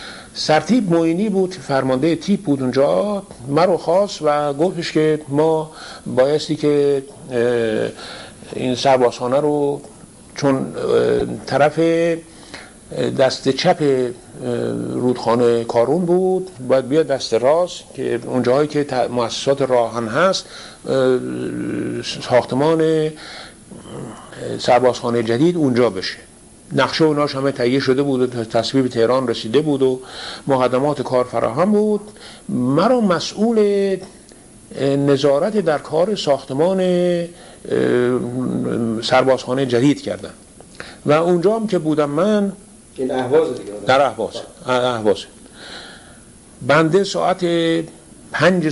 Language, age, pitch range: Persian, 60-79, 125-165 Hz